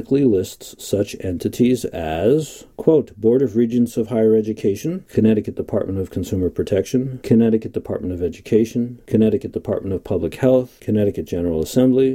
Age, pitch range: 50-69, 95-120 Hz